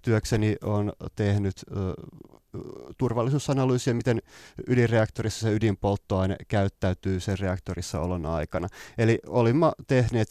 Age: 30-49